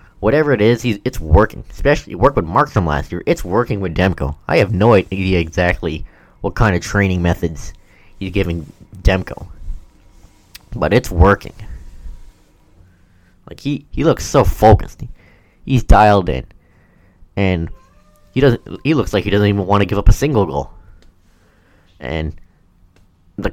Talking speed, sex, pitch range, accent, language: 155 wpm, male, 85-105 Hz, American, English